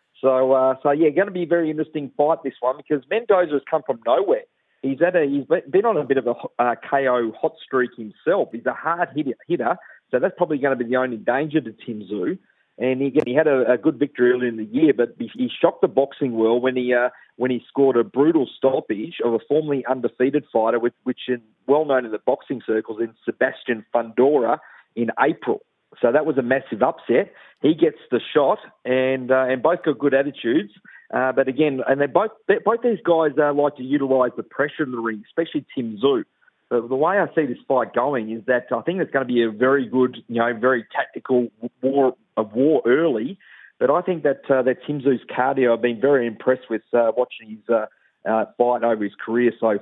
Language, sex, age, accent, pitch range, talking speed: English, male, 40-59, Australian, 120-150 Hz, 220 wpm